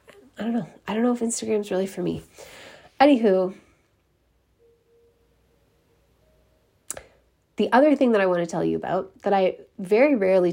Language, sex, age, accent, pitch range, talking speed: English, female, 30-49, American, 170-205 Hz, 155 wpm